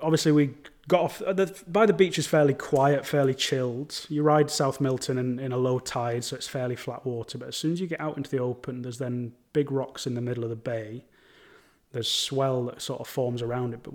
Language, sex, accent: English, male, British